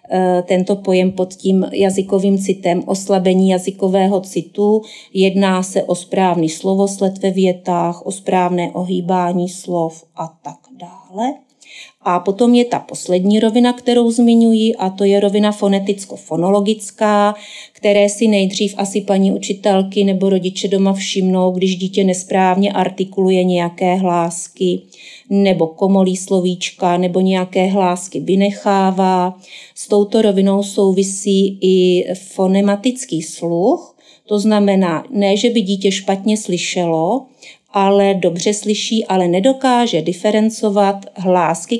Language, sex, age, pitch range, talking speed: Czech, female, 30-49, 180-205 Hz, 115 wpm